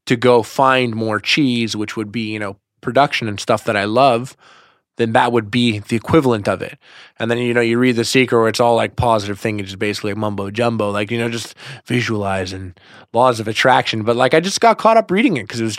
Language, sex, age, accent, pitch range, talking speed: English, male, 20-39, American, 110-125 Hz, 245 wpm